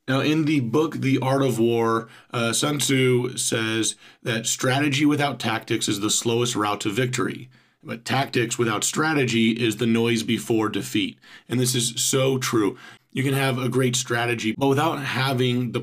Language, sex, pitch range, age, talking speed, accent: English, male, 110-130 Hz, 40-59, 175 wpm, American